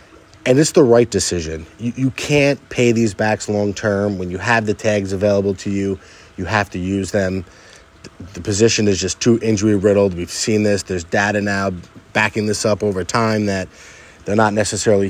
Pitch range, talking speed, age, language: 95-115 Hz, 185 wpm, 30-49, English